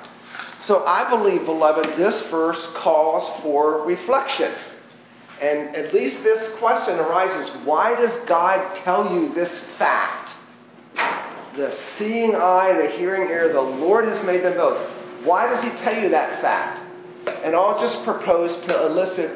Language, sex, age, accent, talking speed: English, male, 40-59, American, 145 wpm